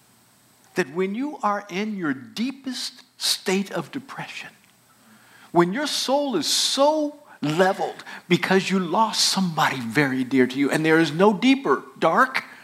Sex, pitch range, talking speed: male, 200-280 Hz, 140 wpm